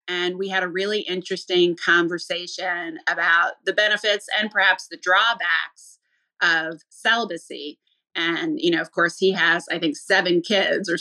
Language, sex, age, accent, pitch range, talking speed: English, female, 30-49, American, 170-200 Hz, 155 wpm